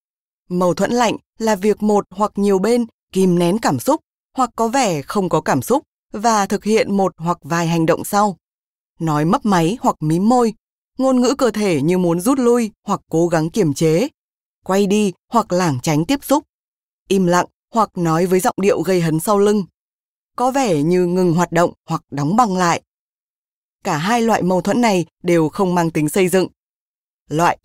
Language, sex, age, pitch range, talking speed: Vietnamese, female, 20-39, 170-220 Hz, 195 wpm